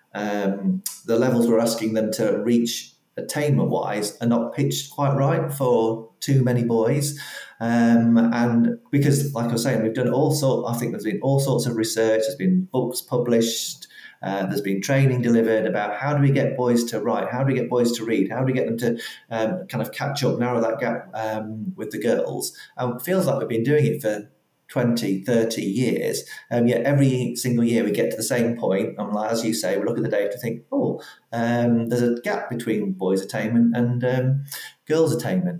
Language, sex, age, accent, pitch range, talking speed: English, male, 30-49, British, 110-135 Hz, 210 wpm